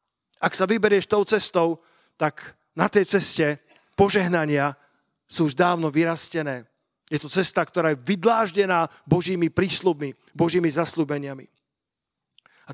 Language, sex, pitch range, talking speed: Slovak, male, 170-200 Hz, 120 wpm